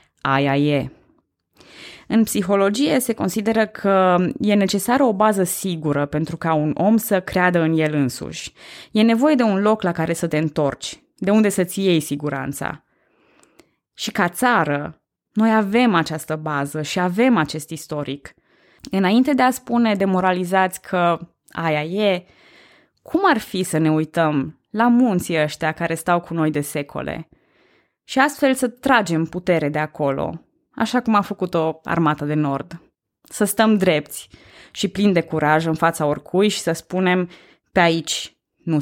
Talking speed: 155 wpm